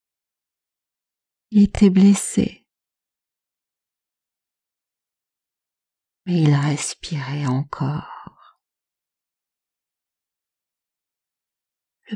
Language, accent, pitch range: French, French, 170-205 Hz